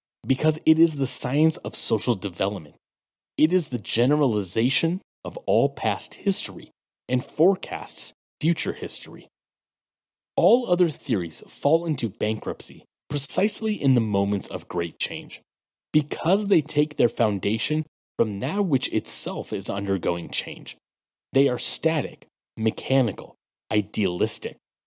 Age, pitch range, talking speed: 30-49, 110-160 Hz, 120 wpm